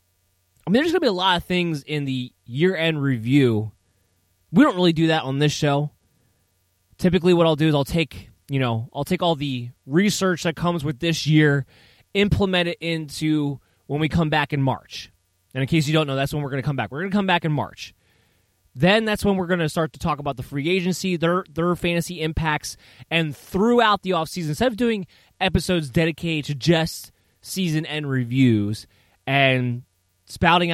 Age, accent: 20-39, American